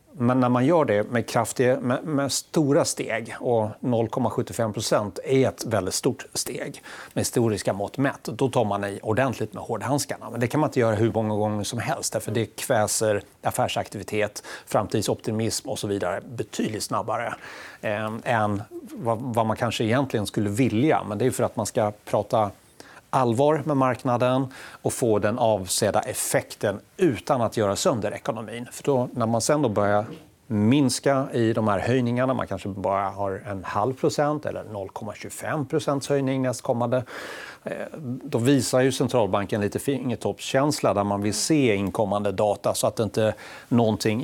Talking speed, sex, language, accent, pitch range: 165 wpm, male, Swedish, native, 105-130 Hz